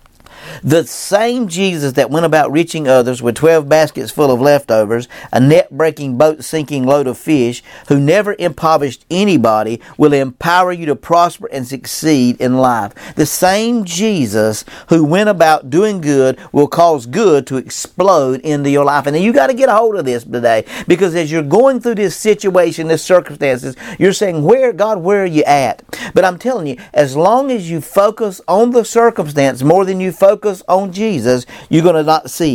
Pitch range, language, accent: 130-195 Hz, English, American